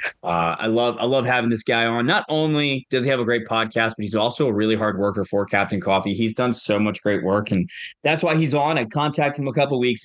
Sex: male